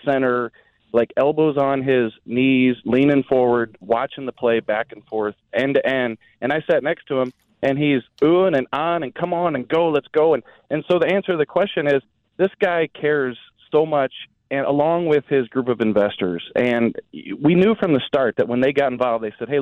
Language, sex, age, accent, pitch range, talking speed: English, male, 30-49, American, 115-145 Hz, 215 wpm